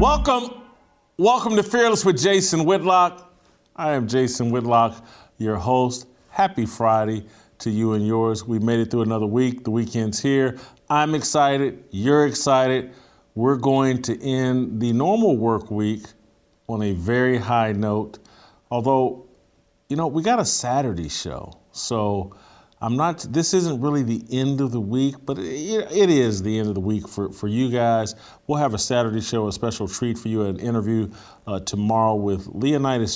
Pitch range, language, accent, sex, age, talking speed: 110-135 Hz, English, American, male, 40-59, 165 wpm